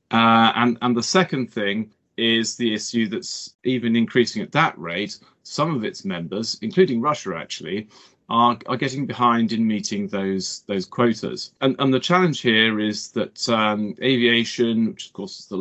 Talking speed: 175 wpm